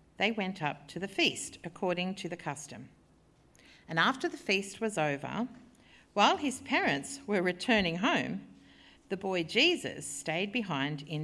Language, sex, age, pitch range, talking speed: English, female, 50-69, 170-255 Hz, 150 wpm